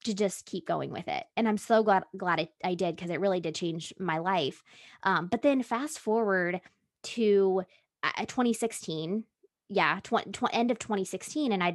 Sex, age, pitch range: female, 20-39, 180-220 Hz